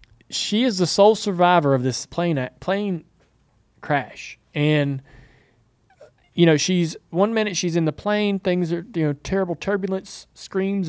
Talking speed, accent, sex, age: 155 wpm, American, male, 20-39